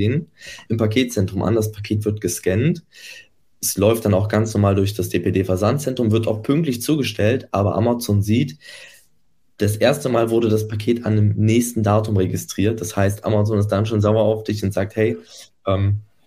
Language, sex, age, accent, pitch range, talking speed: German, male, 20-39, German, 95-110 Hz, 175 wpm